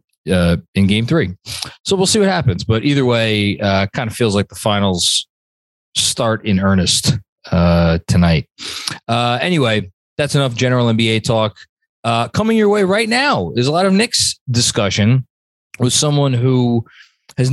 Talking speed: 160 wpm